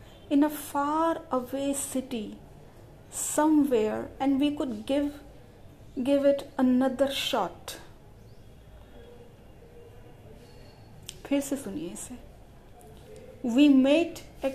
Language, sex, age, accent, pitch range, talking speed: Hindi, female, 40-59, native, 220-280 Hz, 85 wpm